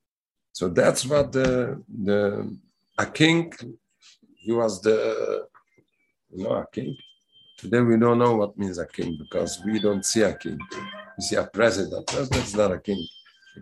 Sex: male